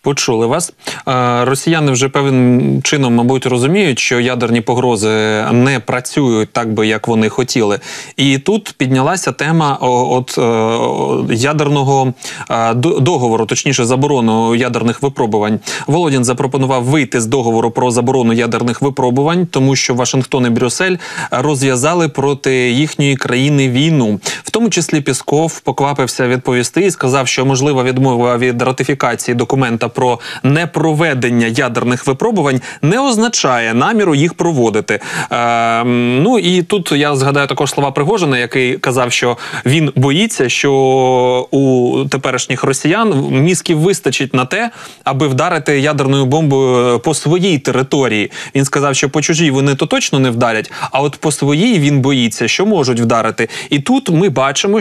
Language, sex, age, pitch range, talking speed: Ukrainian, male, 20-39, 125-150 Hz, 135 wpm